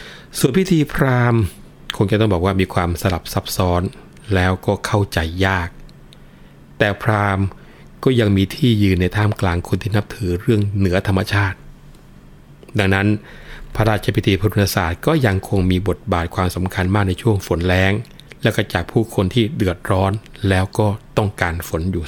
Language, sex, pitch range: Thai, male, 90-110 Hz